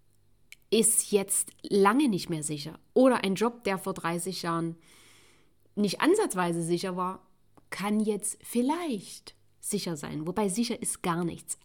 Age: 30-49